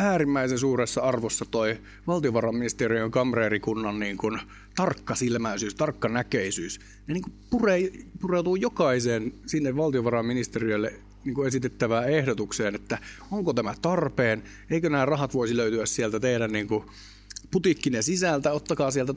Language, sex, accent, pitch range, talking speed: Finnish, male, native, 110-140 Hz, 120 wpm